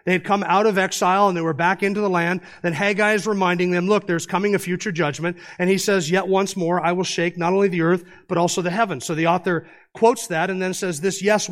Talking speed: 265 wpm